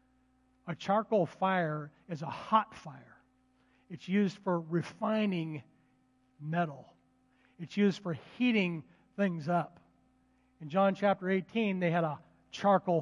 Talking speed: 120 wpm